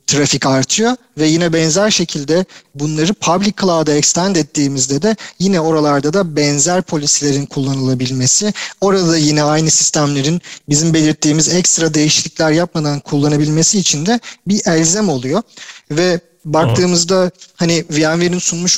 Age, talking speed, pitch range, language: 40-59, 120 wpm, 150-175 Hz, Turkish